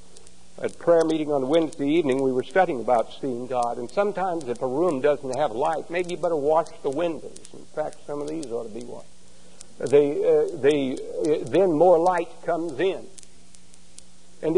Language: English